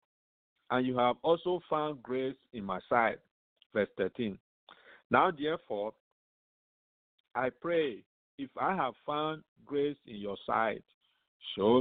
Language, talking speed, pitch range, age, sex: English, 120 wpm, 115-155 Hz, 50-69, male